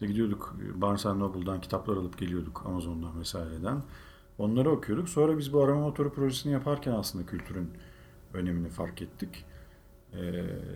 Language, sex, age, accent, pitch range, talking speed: Turkish, male, 50-69, native, 90-120 Hz, 130 wpm